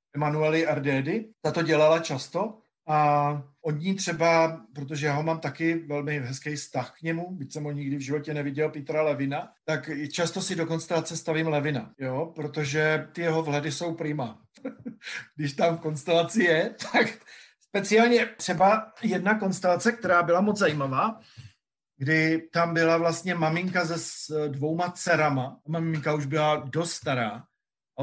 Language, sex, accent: Czech, male, native